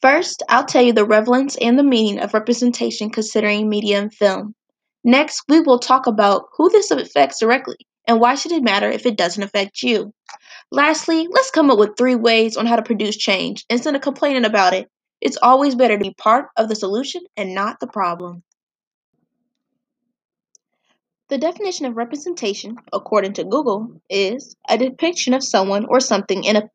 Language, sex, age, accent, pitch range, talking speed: English, female, 20-39, American, 210-265 Hz, 180 wpm